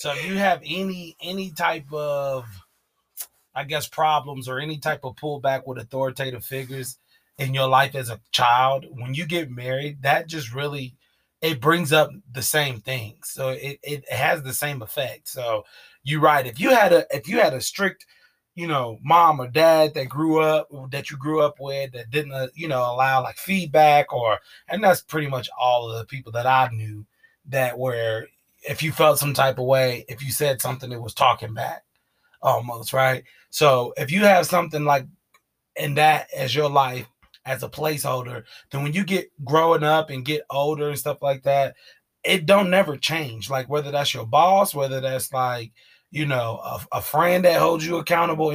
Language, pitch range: English, 130-155 Hz